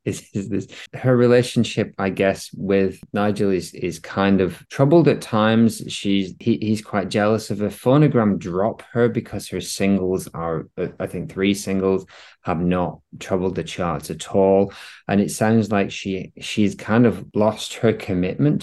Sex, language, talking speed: male, English, 165 wpm